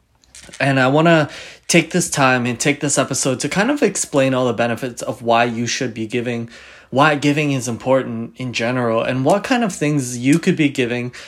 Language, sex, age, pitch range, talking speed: English, male, 20-39, 115-150 Hz, 205 wpm